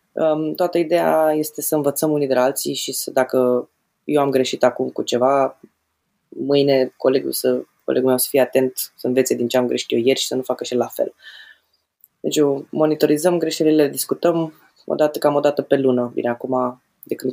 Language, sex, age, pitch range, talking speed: Romanian, female, 20-39, 130-165 Hz, 195 wpm